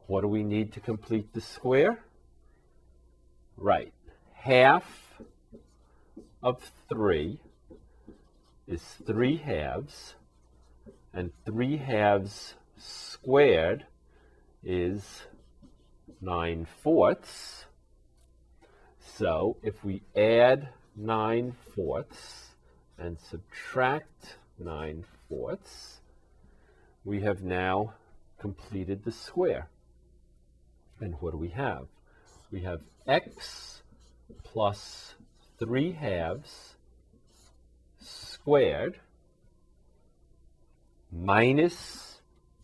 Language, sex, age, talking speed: English, male, 50-69, 70 wpm